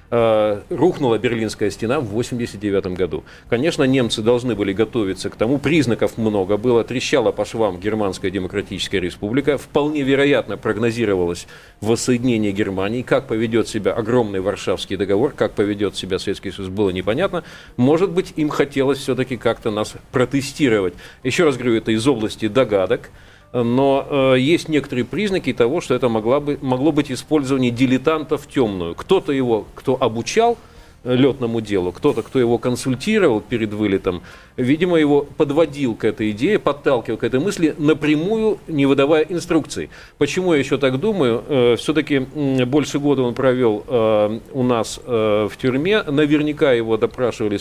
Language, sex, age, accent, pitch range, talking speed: Russian, male, 40-59, native, 110-145 Hz, 140 wpm